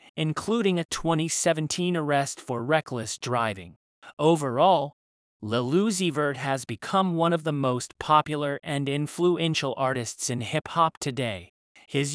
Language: English